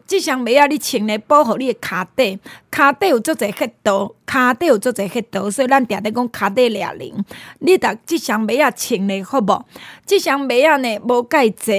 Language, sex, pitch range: Chinese, female, 220-290 Hz